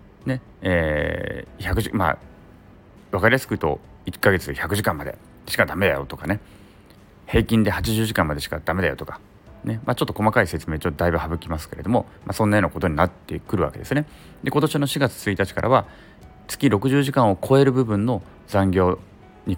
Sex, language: male, Japanese